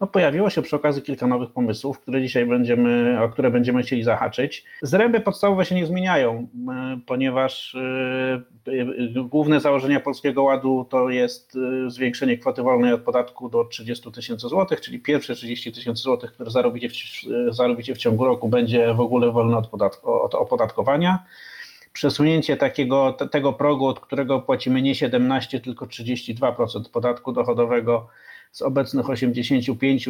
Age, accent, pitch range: 30-49, native, 120-145 Hz